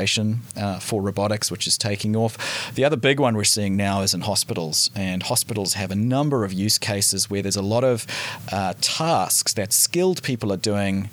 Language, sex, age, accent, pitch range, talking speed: English, male, 30-49, Australian, 95-115 Hz, 200 wpm